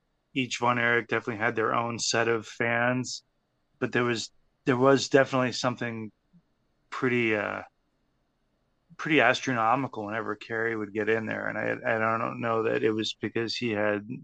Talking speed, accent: 160 wpm, American